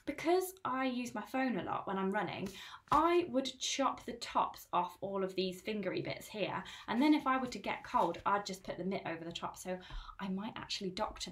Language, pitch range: English, 180-260 Hz